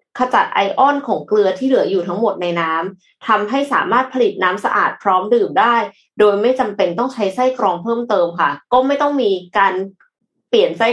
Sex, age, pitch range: female, 20-39, 195-255 Hz